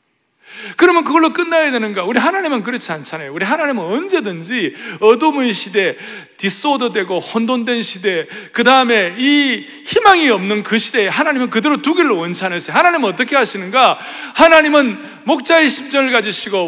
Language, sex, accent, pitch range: Korean, male, native, 195-310 Hz